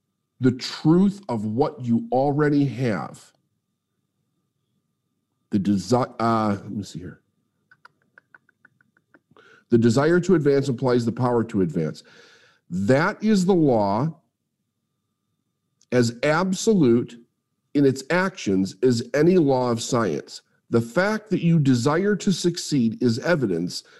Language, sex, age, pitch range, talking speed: English, male, 50-69, 115-160 Hz, 115 wpm